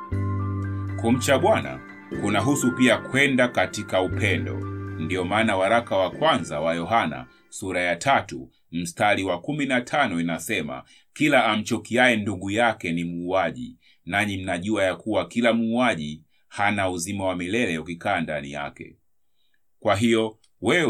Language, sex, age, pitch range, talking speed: Swahili, male, 30-49, 90-115 Hz, 125 wpm